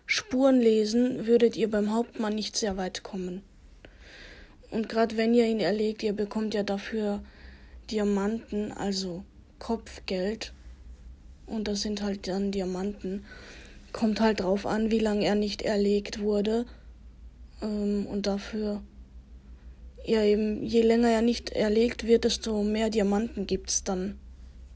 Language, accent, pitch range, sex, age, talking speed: German, German, 185-225 Hz, female, 10-29, 130 wpm